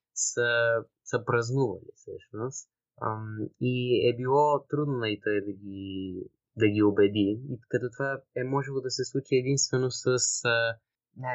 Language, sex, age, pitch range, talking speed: Bulgarian, male, 20-39, 105-130 Hz, 145 wpm